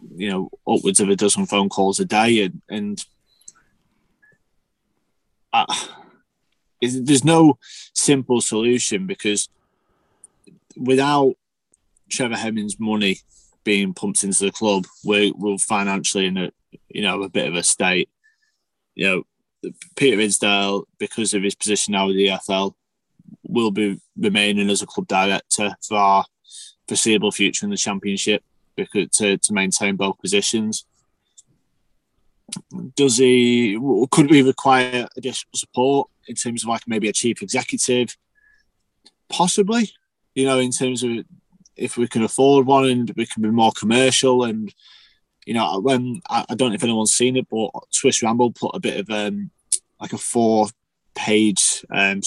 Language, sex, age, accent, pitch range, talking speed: English, male, 20-39, British, 100-125 Hz, 145 wpm